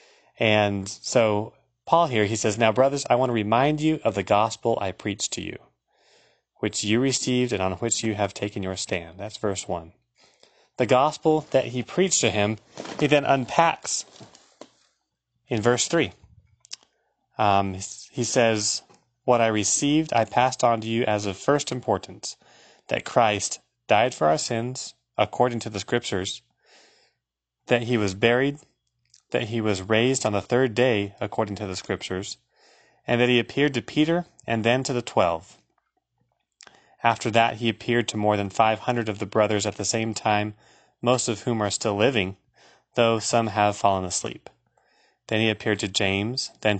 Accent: American